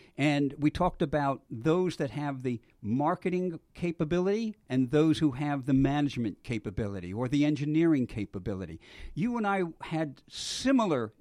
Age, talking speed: 60-79, 140 wpm